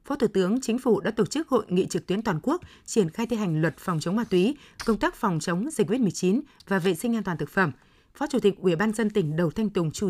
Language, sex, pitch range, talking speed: Vietnamese, female, 185-230 Hz, 280 wpm